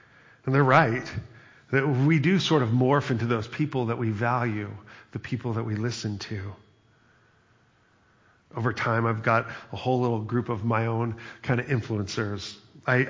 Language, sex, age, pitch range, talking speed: English, male, 40-59, 110-135 Hz, 165 wpm